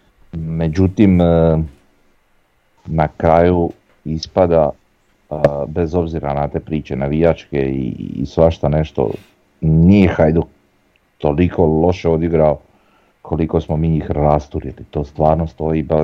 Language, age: Croatian, 40-59